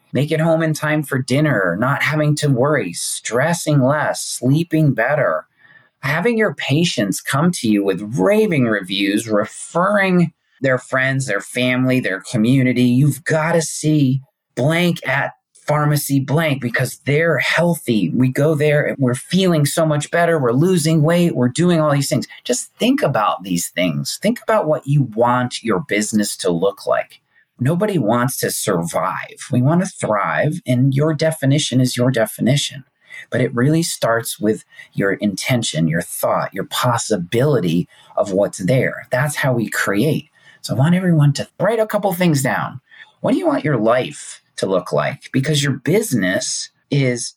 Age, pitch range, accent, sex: 30-49, 125-160 Hz, American, male